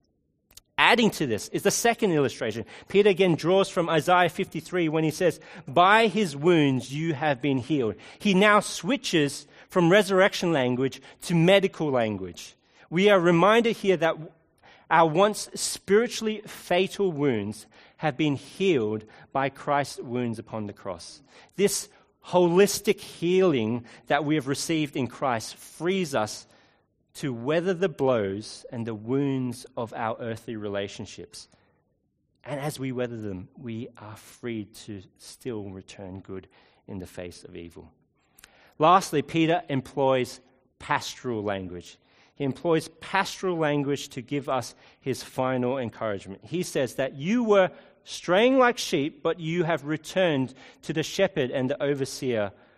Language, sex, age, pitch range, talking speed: English, male, 40-59, 120-180 Hz, 140 wpm